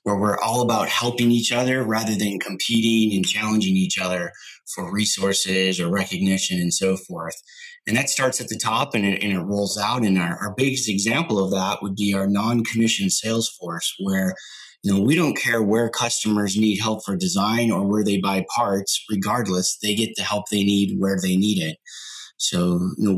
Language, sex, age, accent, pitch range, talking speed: English, male, 30-49, American, 100-115 Hz, 200 wpm